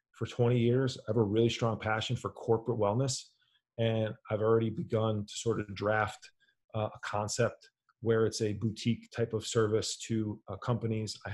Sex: male